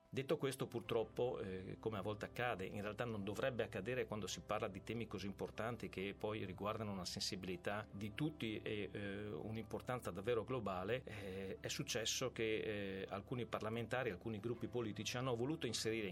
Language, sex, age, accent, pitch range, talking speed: Italian, male, 40-59, native, 100-120 Hz, 170 wpm